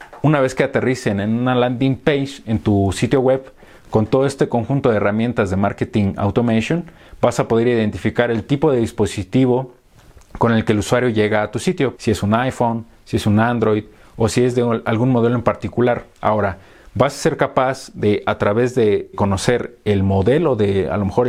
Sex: male